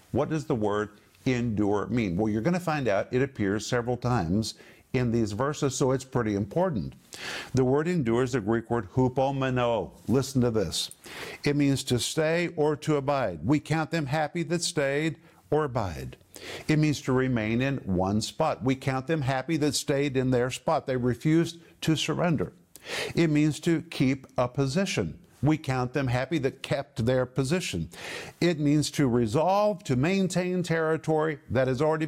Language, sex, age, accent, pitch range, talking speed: English, male, 50-69, American, 130-165 Hz, 175 wpm